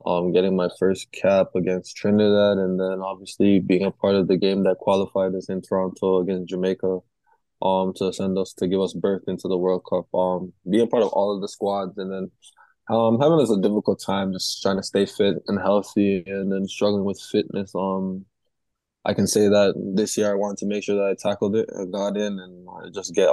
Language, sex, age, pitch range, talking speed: English, male, 20-39, 95-100 Hz, 220 wpm